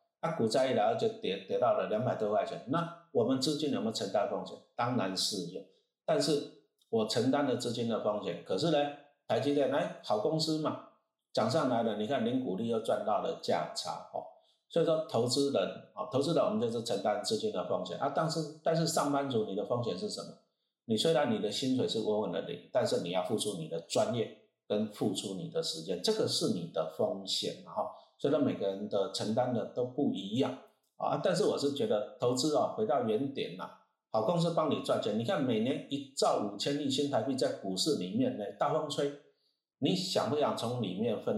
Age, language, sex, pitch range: 50-69, Chinese, male, 130-195 Hz